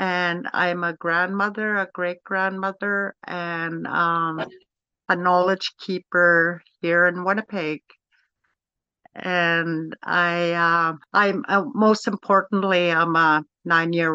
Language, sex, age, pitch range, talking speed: English, female, 60-79, 165-190 Hz, 105 wpm